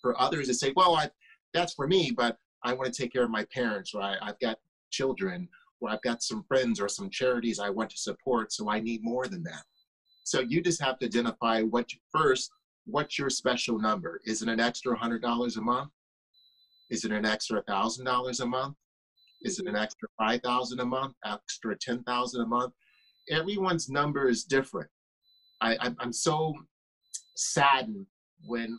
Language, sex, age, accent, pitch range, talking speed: English, male, 30-49, American, 115-140 Hz, 185 wpm